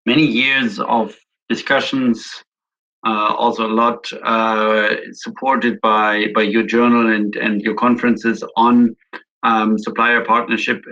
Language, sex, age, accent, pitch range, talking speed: English, male, 50-69, German, 110-125 Hz, 120 wpm